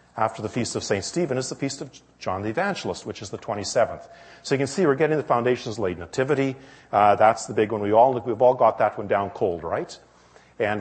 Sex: male